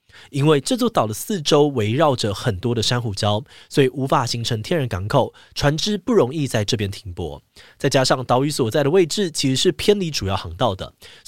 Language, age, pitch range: Chinese, 20-39, 115-155 Hz